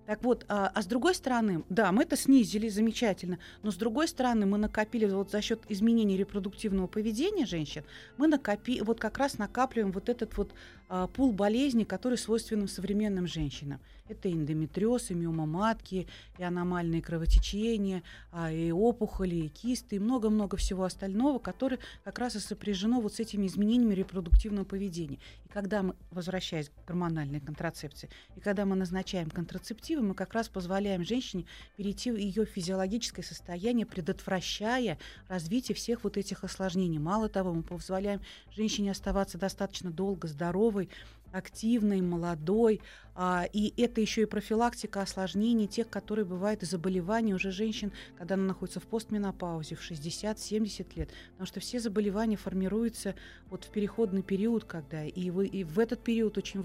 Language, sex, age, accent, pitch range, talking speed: Russian, female, 30-49, native, 185-220 Hz, 155 wpm